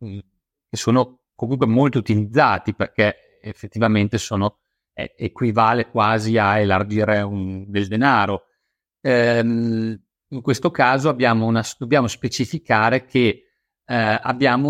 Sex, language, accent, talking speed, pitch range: male, Italian, native, 105 wpm, 110-130 Hz